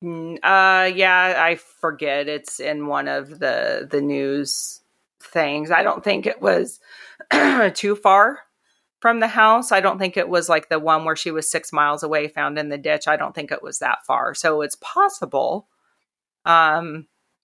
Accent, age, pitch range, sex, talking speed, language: American, 30-49, 150-175 Hz, female, 175 wpm, English